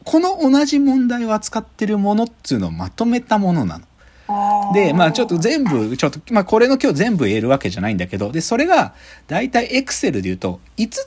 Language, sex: Japanese, male